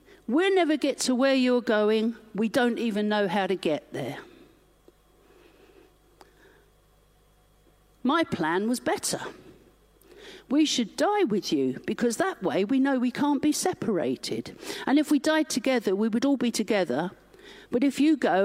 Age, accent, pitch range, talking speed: 50-69, British, 220-330 Hz, 155 wpm